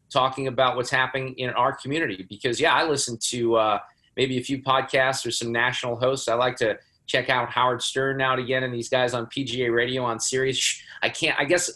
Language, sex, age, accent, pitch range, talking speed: English, male, 30-49, American, 120-140 Hz, 220 wpm